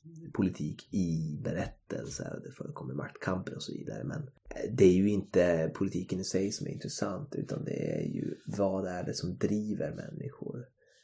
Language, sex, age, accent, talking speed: Swedish, male, 30-49, native, 170 wpm